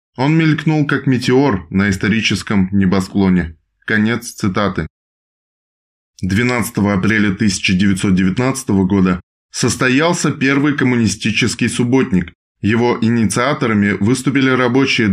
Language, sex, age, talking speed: Russian, male, 20-39, 85 wpm